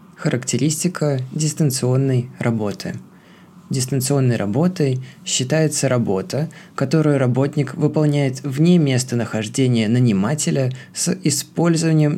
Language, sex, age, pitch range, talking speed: Russian, male, 20-39, 125-160 Hz, 75 wpm